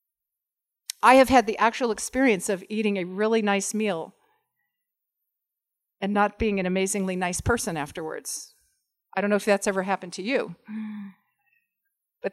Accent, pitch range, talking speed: American, 200-265 Hz, 145 wpm